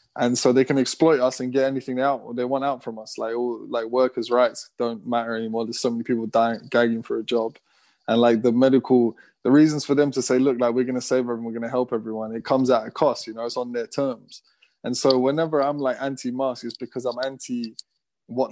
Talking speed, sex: 250 wpm, male